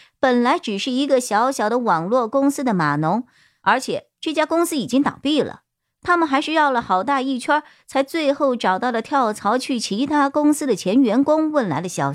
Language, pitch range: Chinese, 210-285 Hz